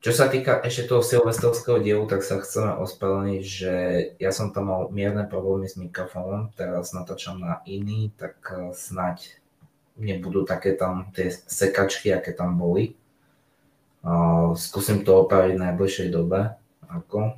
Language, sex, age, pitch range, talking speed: Slovak, male, 20-39, 95-105 Hz, 150 wpm